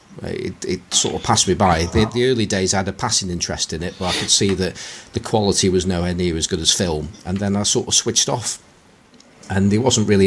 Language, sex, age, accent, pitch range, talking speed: English, male, 40-59, British, 90-100 Hz, 250 wpm